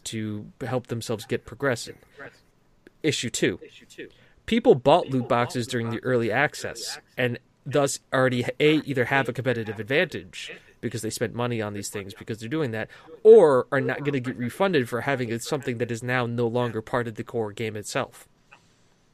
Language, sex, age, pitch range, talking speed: English, male, 30-49, 115-145 Hz, 175 wpm